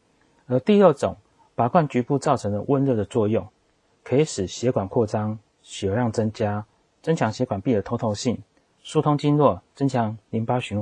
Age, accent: 30-49, native